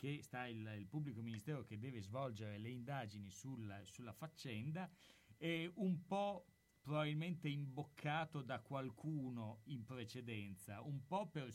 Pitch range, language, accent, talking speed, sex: 115-150 Hz, Italian, native, 135 wpm, male